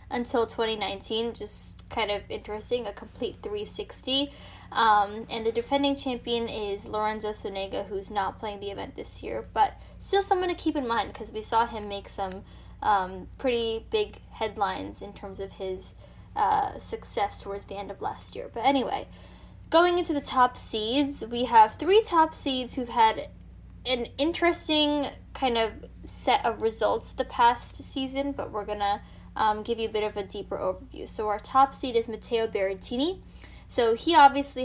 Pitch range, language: 210-270 Hz, English